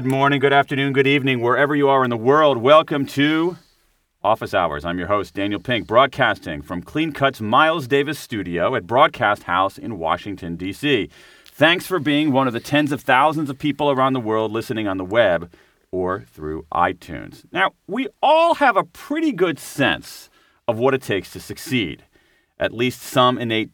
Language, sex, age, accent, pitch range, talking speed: English, male, 40-59, American, 110-145 Hz, 185 wpm